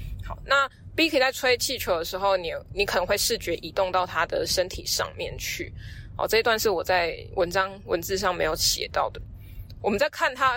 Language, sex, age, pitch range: Chinese, female, 20-39, 185-250 Hz